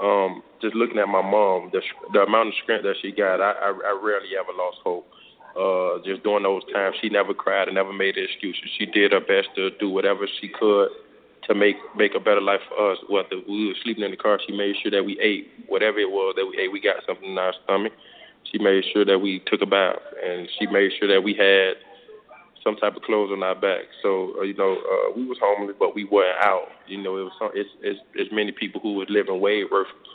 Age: 20-39